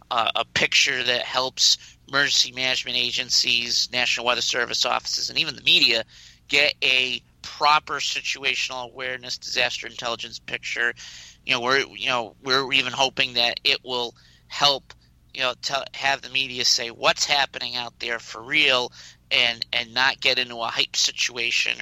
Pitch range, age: 115-130 Hz, 50-69